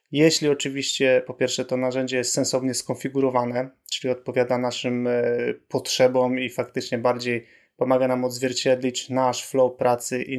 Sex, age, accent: male, 20-39, native